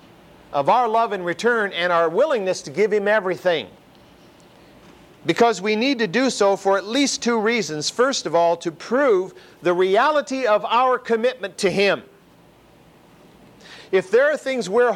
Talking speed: 160 wpm